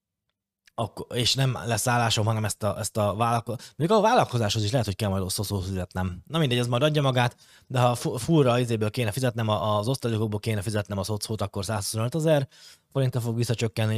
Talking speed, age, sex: 200 wpm, 20-39, male